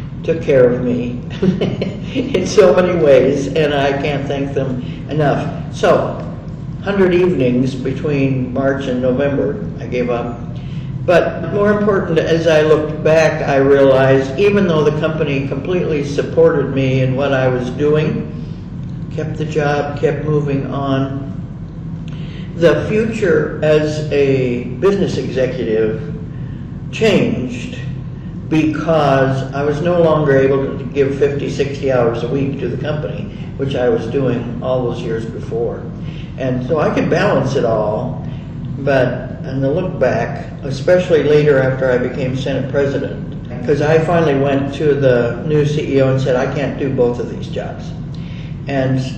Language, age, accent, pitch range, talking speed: English, 60-79, American, 130-155 Hz, 145 wpm